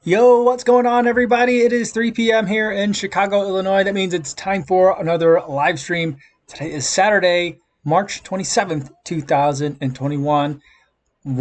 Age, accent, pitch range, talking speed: 20-39, American, 125-165 Hz, 140 wpm